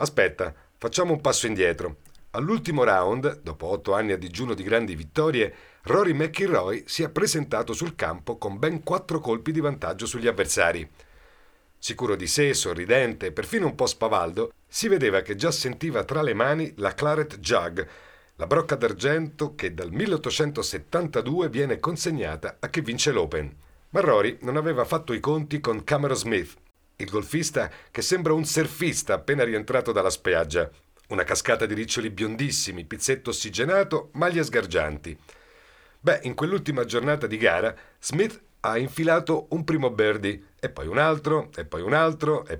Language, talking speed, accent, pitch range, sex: Italian, 155 wpm, native, 115-160 Hz, male